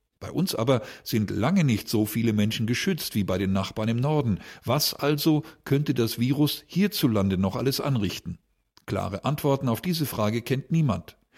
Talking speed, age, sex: 170 wpm, 50-69, male